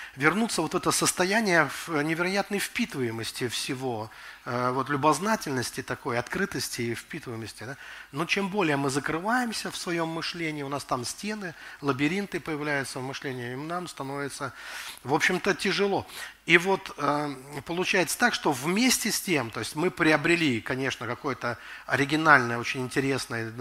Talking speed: 135 wpm